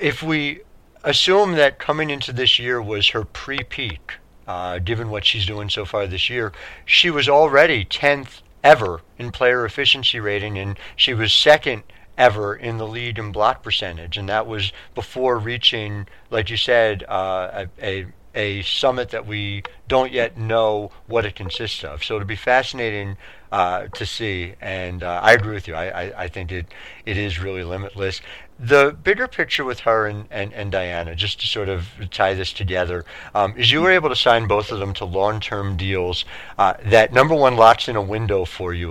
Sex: male